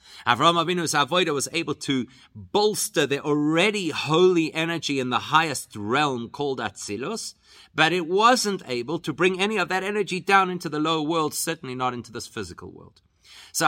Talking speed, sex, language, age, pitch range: 170 wpm, male, English, 30-49, 115-170 Hz